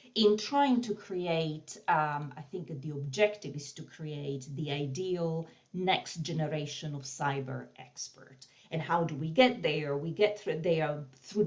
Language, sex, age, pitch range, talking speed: English, female, 40-59, 140-175 Hz, 160 wpm